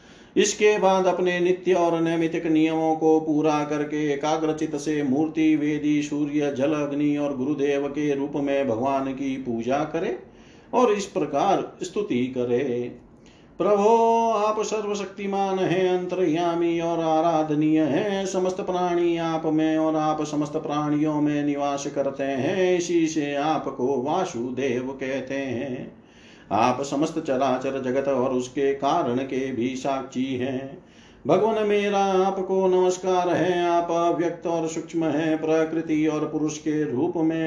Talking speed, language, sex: 135 wpm, Hindi, male